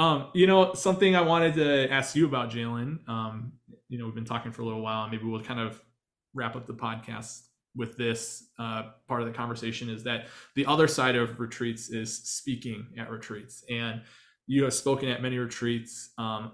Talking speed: 195 wpm